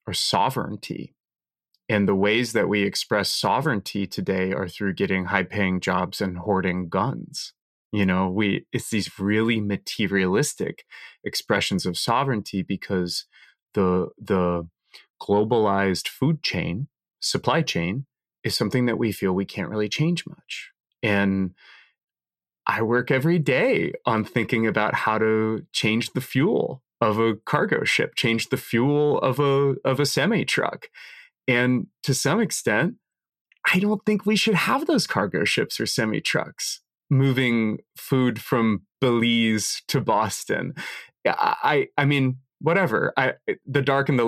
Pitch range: 100-135 Hz